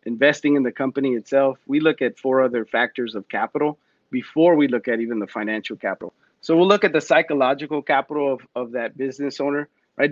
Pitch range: 130-160 Hz